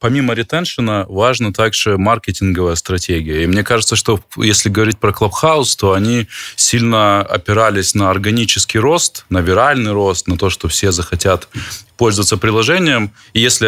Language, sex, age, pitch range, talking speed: Ukrainian, male, 20-39, 90-110 Hz, 145 wpm